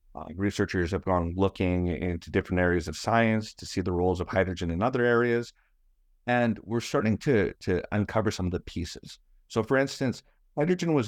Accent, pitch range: American, 85-110 Hz